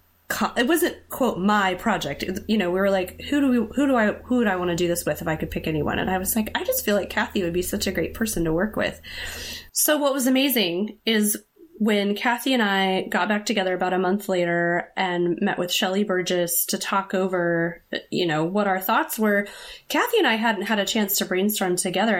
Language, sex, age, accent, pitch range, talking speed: English, female, 30-49, American, 180-235 Hz, 235 wpm